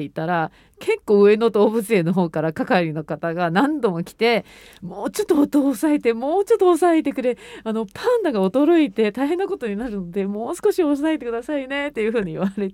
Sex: female